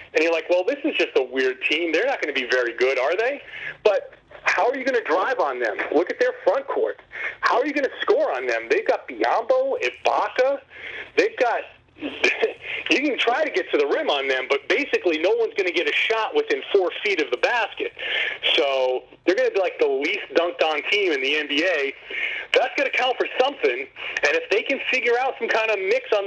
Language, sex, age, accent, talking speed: English, male, 40-59, American, 235 wpm